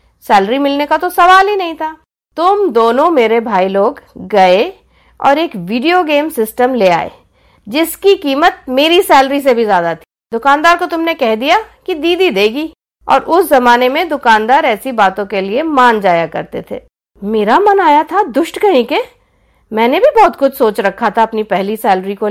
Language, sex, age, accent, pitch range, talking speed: Hindi, female, 50-69, native, 230-335 Hz, 185 wpm